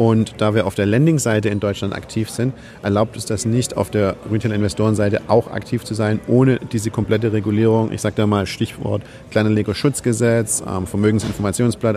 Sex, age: male, 40-59